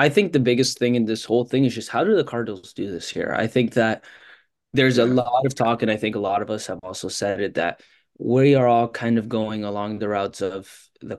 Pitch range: 100-120 Hz